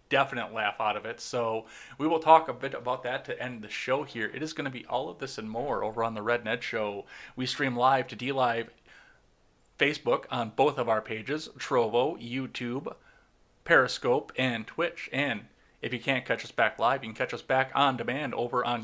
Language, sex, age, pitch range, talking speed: English, male, 30-49, 120-160 Hz, 215 wpm